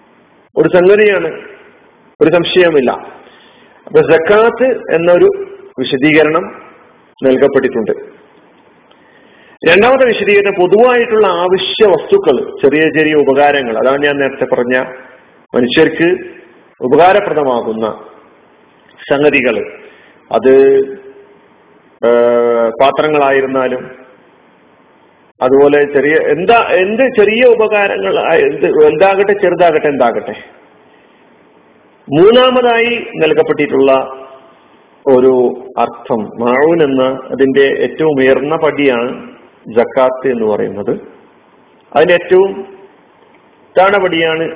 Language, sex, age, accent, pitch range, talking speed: Malayalam, male, 40-59, native, 135-210 Hz, 65 wpm